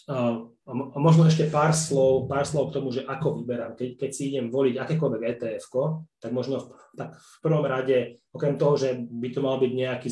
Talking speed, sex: 200 wpm, male